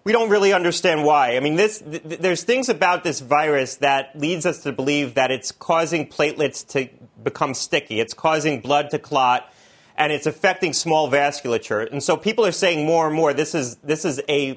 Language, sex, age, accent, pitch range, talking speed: English, male, 30-49, American, 135-165 Hz, 205 wpm